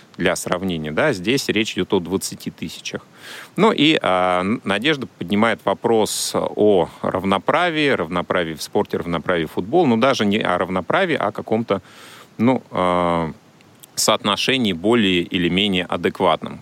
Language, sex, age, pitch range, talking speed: Russian, male, 30-49, 85-110 Hz, 135 wpm